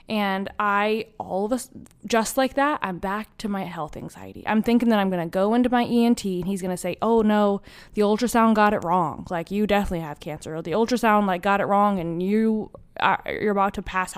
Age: 20-39